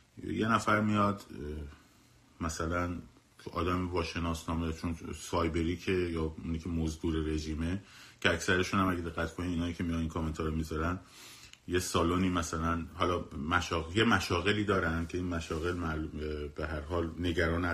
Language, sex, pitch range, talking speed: Persian, male, 80-100 Hz, 145 wpm